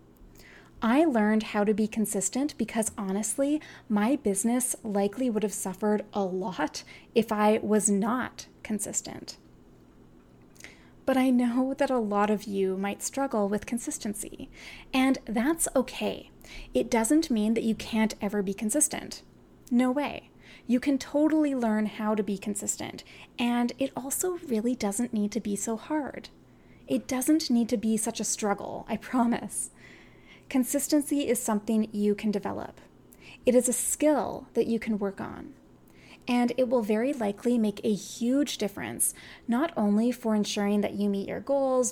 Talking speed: 155 wpm